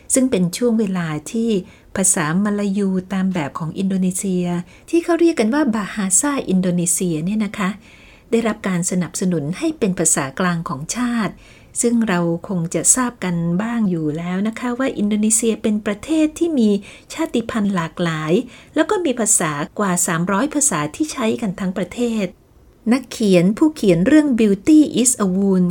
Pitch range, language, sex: 180-235 Hz, Thai, female